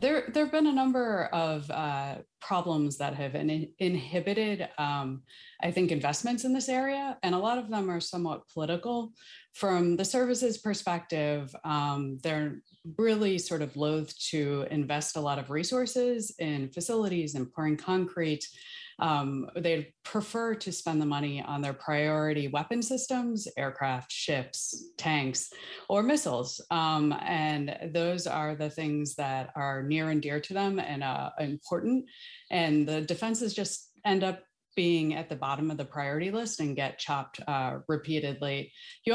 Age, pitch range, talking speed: 30-49, 145-200 Hz, 155 wpm